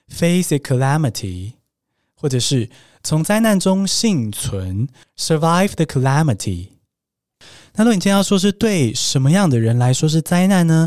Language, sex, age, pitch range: Chinese, male, 20-39, 120-175 Hz